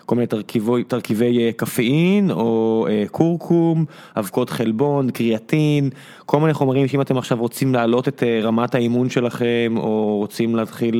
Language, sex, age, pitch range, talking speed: Hebrew, male, 20-39, 115-150 Hz, 155 wpm